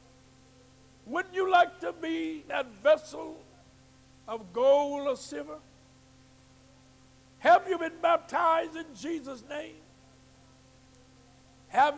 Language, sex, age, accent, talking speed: English, male, 60-79, American, 95 wpm